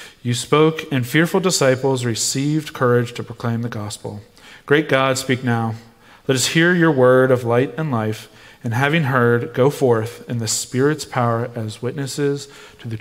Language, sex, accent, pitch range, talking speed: English, male, American, 120-150 Hz, 170 wpm